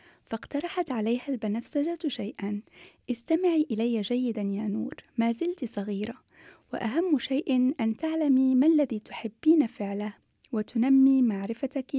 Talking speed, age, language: 110 wpm, 20-39, French